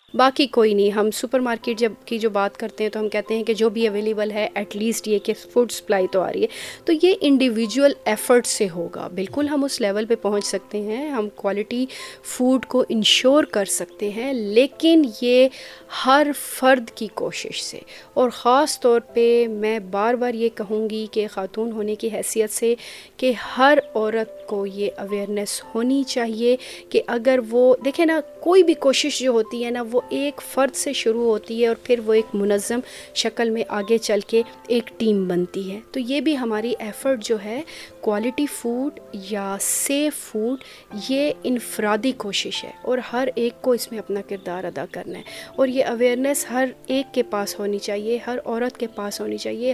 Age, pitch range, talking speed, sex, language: 30-49, 215-265 Hz, 190 wpm, female, Urdu